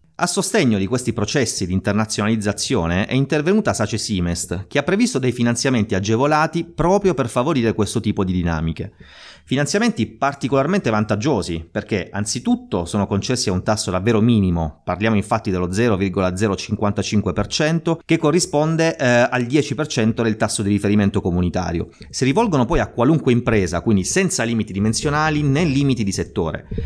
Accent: native